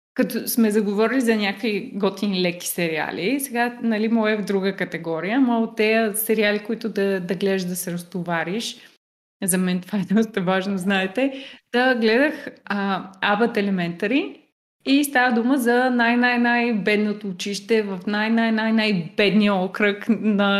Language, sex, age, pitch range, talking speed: Bulgarian, female, 20-39, 195-255 Hz, 140 wpm